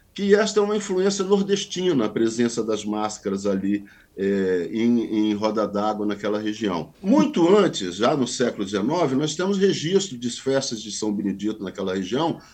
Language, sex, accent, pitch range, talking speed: Portuguese, male, Brazilian, 115-170 Hz, 165 wpm